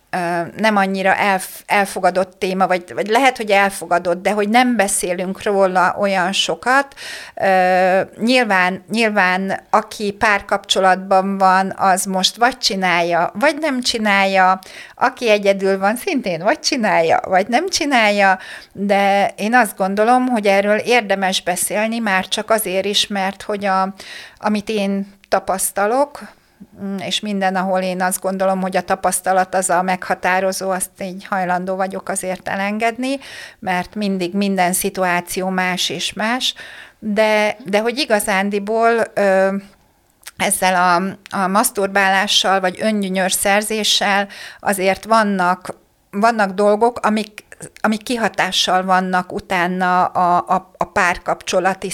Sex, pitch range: female, 185-210 Hz